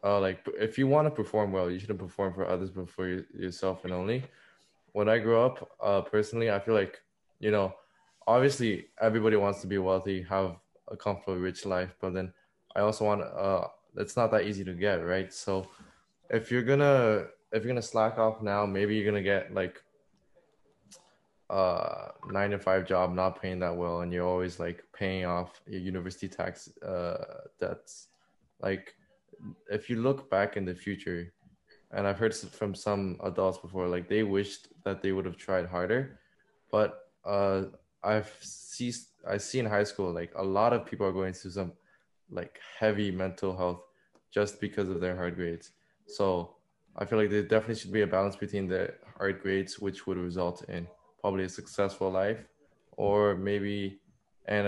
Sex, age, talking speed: male, 20-39, 180 wpm